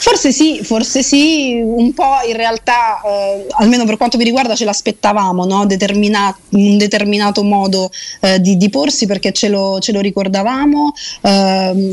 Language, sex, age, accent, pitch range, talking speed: Italian, female, 30-49, native, 195-245 Hz, 165 wpm